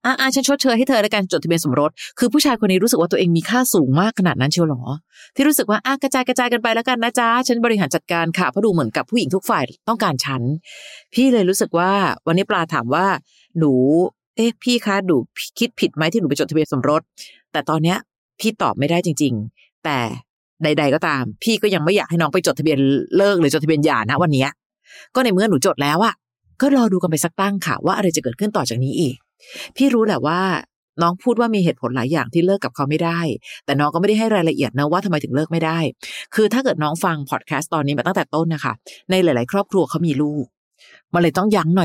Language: Thai